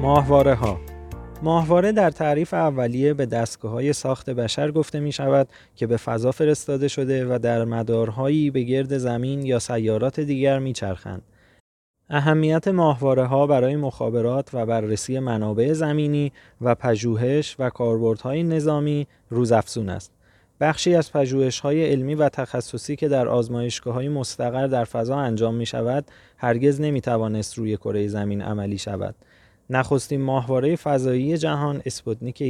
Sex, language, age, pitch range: male, Persian, 20-39, 115-145 Hz